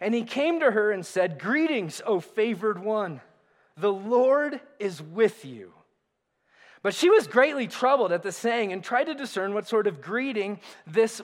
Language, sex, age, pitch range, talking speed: English, male, 20-39, 210-265 Hz, 175 wpm